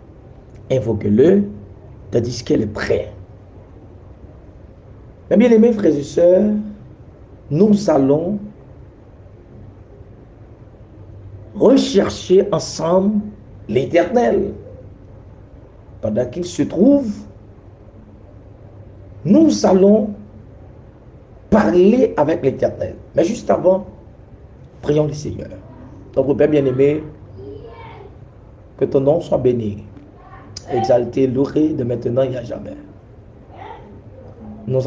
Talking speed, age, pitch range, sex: 80 wpm, 60-79, 105-150 Hz, male